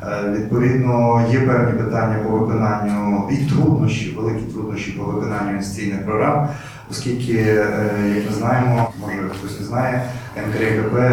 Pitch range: 105-120 Hz